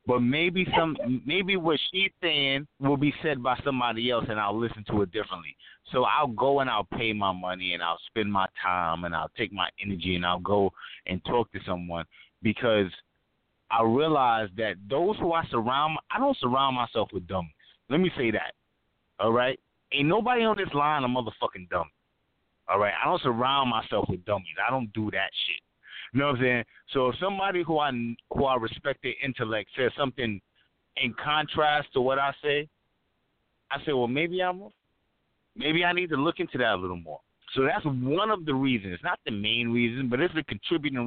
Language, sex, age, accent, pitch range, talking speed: English, male, 30-49, American, 105-145 Hz, 200 wpm